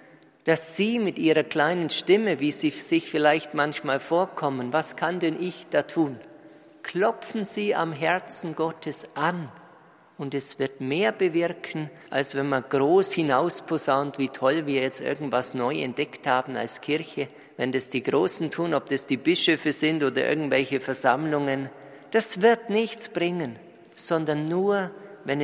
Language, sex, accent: German, male, German